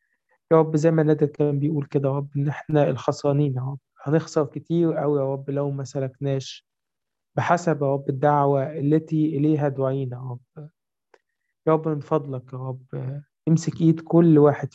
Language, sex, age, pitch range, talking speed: Arabic, male, 20-39, 135-155 Hz, 170 wpm